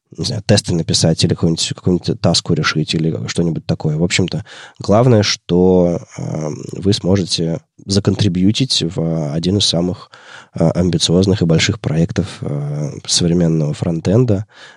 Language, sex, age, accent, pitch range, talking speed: Russian, male, 20-39, native, 85-110 Hz, 110 wpm